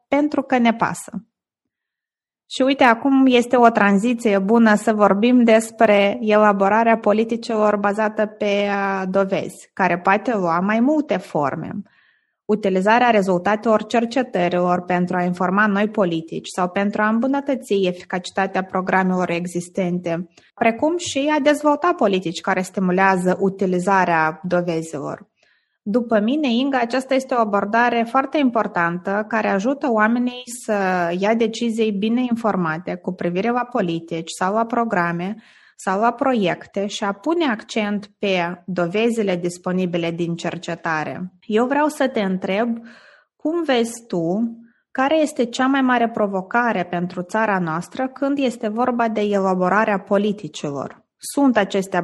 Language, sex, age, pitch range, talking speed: Romanian, female, 20-39, 185-235 Hz, 125 wpm